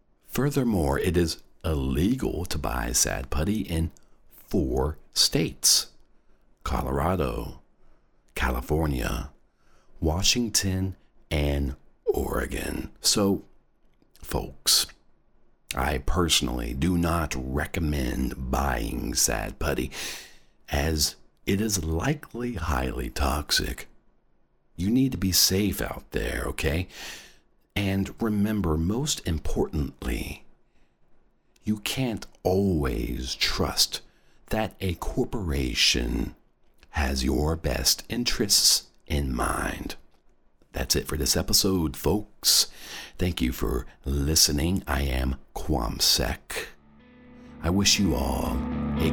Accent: American